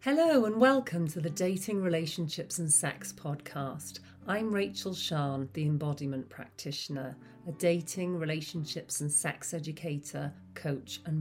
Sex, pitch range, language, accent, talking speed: female, 145-185 Hz, English, British, 130 wpm